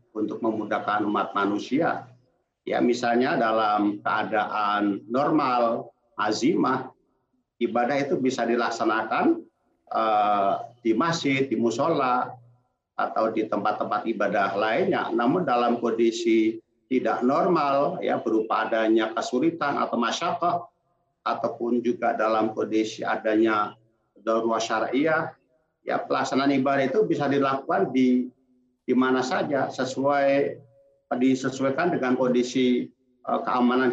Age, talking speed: 50-69, 100 wpm